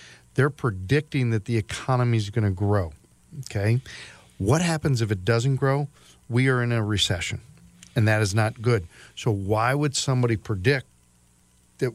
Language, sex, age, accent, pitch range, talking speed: English, male, 40-59, American, 105-120 Hz, 160 wpm